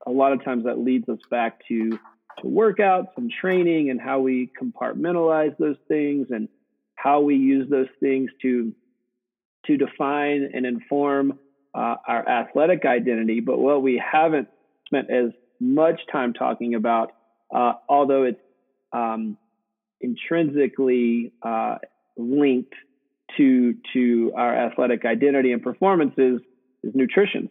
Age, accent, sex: 40-59, American, male